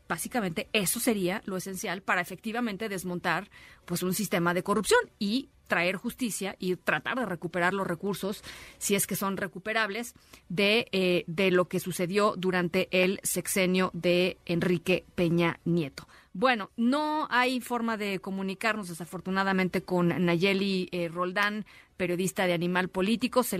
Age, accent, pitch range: 30-49, Mexican, 180-210 Hz